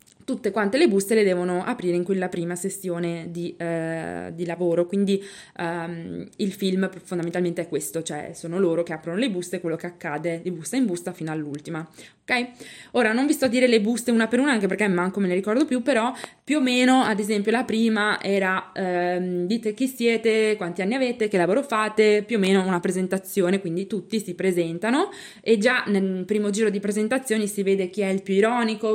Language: Italian